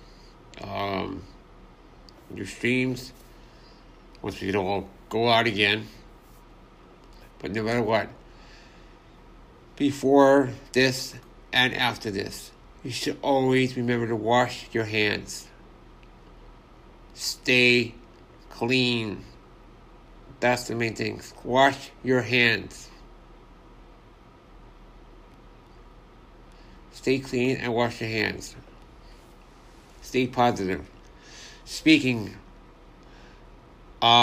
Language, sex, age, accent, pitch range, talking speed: English, male, 60-79, American, 100-125 Hz, 80 wpm